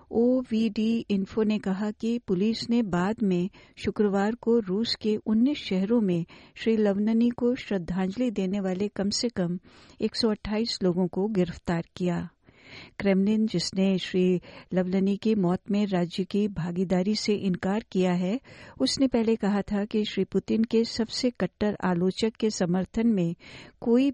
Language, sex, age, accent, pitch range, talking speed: Hindi, female, 60-79, native, 185-225 Hz, 145 wpm